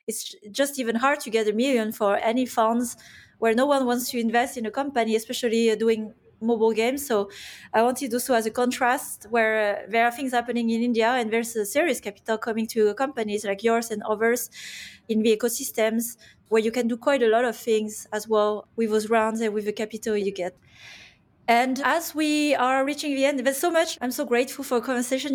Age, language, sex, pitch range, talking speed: 20-39, English, female, 225-255 Hz, 215 wpm